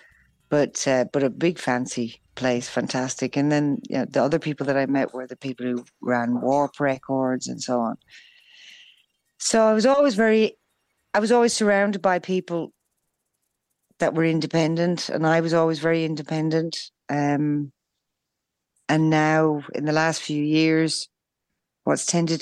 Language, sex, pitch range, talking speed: Spanish, female, 125-160 Hz, 155 wpm